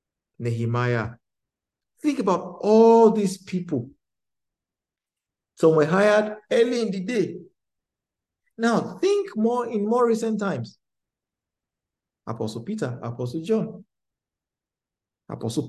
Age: 50-69